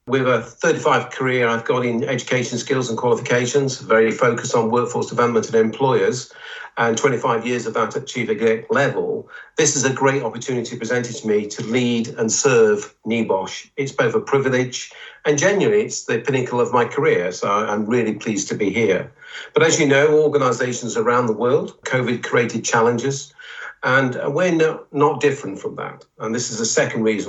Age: 50-69